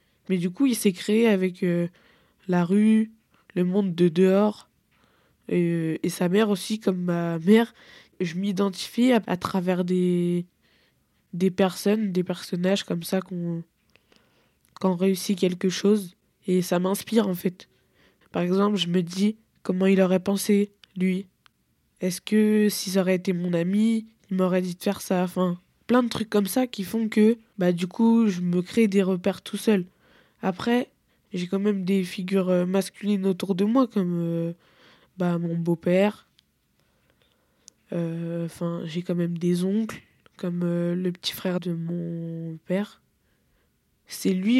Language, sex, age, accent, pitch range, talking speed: French, female, 20-39, French, 180-205 Hz, 155 wpm